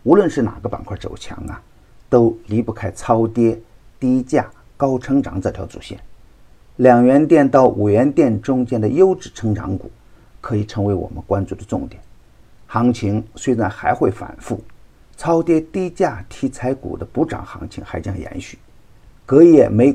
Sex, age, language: male, 50-69, Chinese